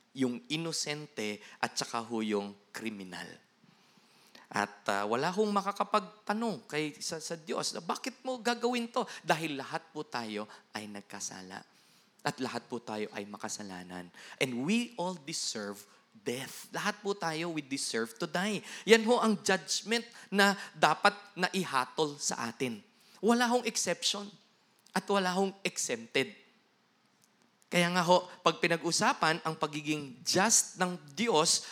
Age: 20-39